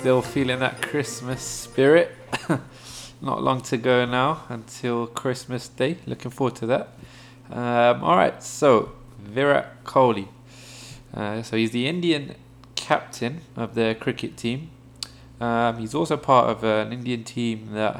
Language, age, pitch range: English, 20-39, 110-125 Hz